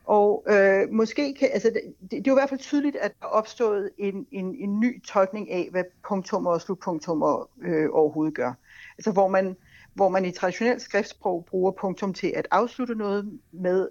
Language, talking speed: Danish, 195 wpm